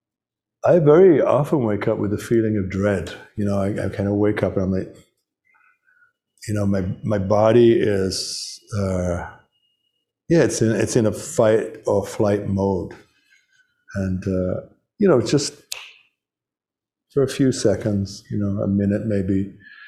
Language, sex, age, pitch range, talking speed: English, male, 50-69, 100-120 Hz, 155 wpm